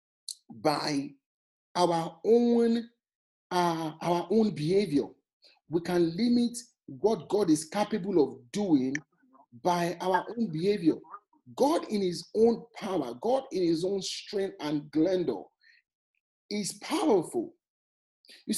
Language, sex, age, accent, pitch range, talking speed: English, male, 40-59, Nigerian, 165-235 Hz, 115 wpm